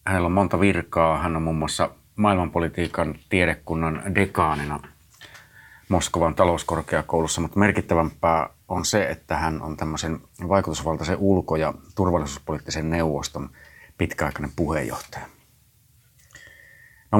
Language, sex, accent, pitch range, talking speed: Finnish, male, native, 80-95 Hz, 105 wpm